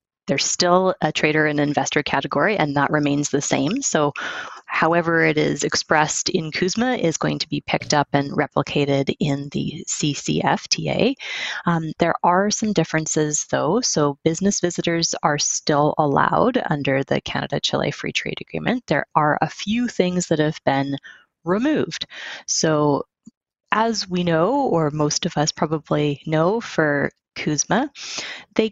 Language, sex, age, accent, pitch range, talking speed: English, female, 20-39, American, 145-190 Hz, 145 wpm